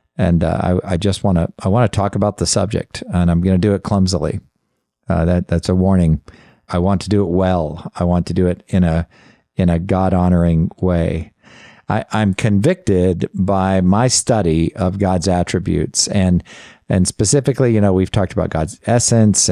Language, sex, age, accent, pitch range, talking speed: English, male, 50-69, American, 85-105 Hz, 195 wpm